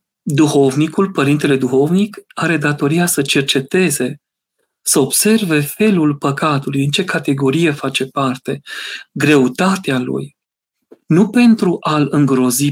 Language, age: Romanian, 40-59